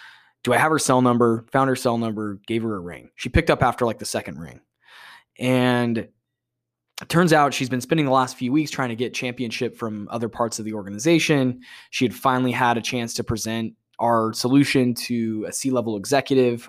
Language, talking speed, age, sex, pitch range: English, 205 wpm, 10-29, male, 115-130 Hz